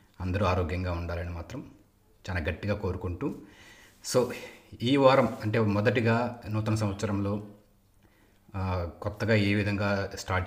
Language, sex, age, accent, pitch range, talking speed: Telugu, male, 30-49, native, 95-110 Hz, 105 wpm